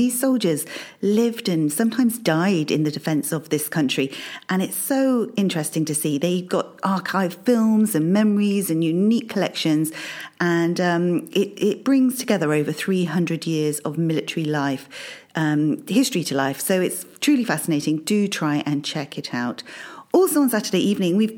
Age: 40-59